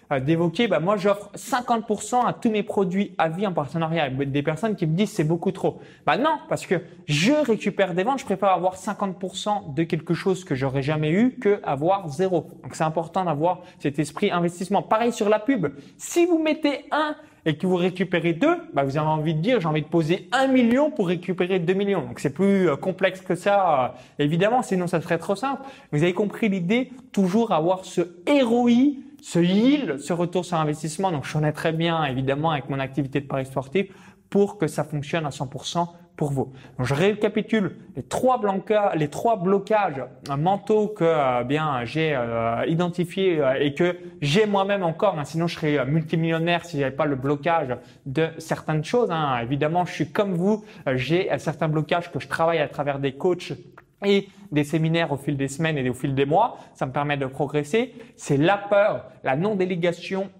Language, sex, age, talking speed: French, male, 20-39, 195 wpm